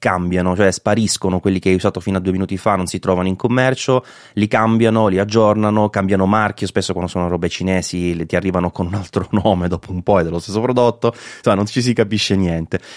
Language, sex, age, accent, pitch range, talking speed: Italian, male, 30-49, native, 90-110 Hz, 215 wpm